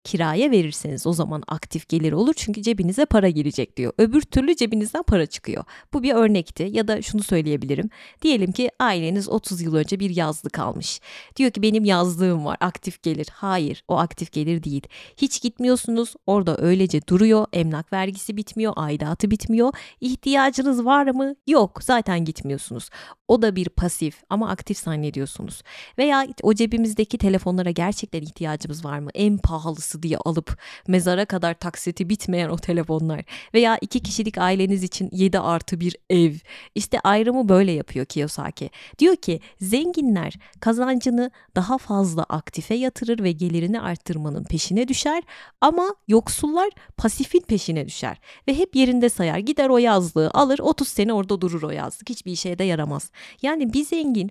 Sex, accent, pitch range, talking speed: female, native, 170-240 Hz, 155 wpm